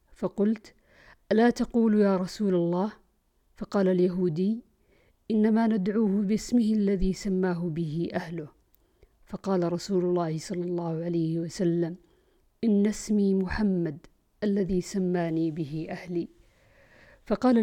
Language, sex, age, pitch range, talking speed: Arabic, female, 50-69, 175-215 Hz, 100 wpm